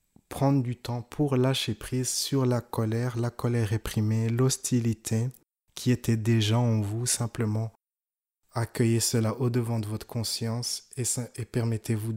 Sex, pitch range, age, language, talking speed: male, 110-125 Hz, 20-39, French, 150 wpm